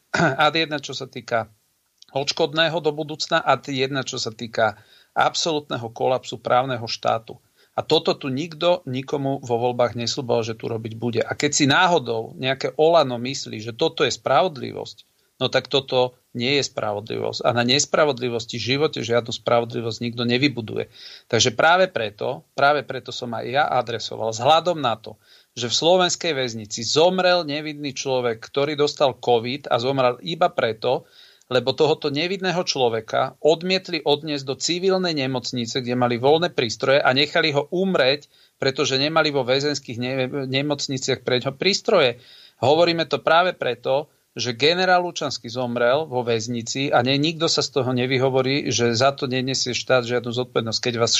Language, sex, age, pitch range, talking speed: Slovak, male, 40-59, 120-150 Hz, 155 wpm